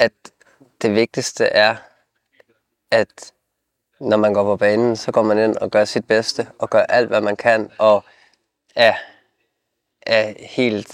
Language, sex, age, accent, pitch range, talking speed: Danish, male, 20-39, native, 105-120 Hz, 155 wpm